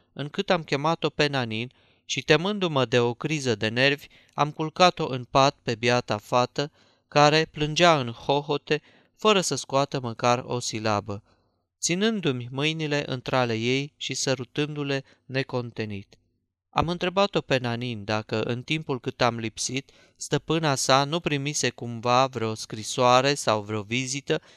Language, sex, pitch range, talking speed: Romanian, male, 115-145 Hz, 135 wpm